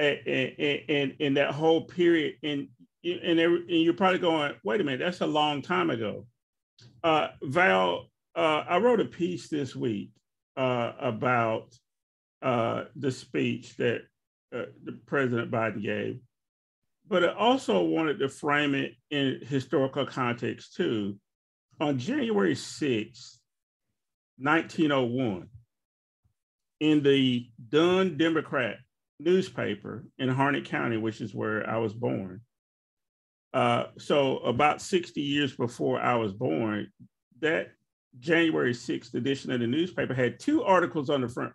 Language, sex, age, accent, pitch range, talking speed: English, male, 40-59, American, 120-170 Hz, 135 wpm